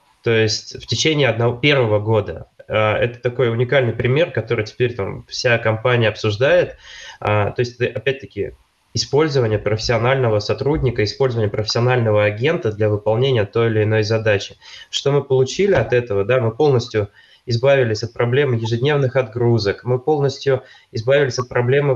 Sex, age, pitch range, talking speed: male, 20-39, 110-130 Hz, 135 wpm